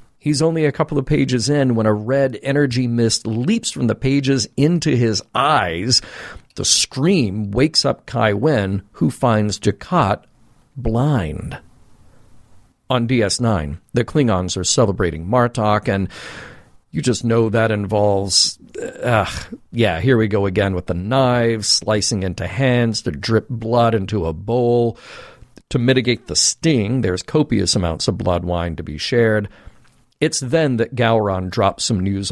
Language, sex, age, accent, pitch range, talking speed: English, male, 40-59, American, 100-130 Hz, 150 wpm